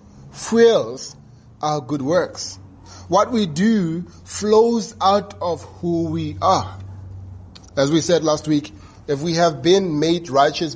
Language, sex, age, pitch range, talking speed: English, male, 30-49, 125-175 Hz, 135 wpm